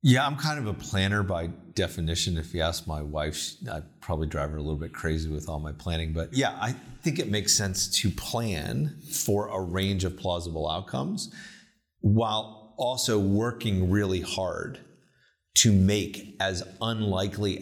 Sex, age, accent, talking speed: male, 30-49, American, 165 wpm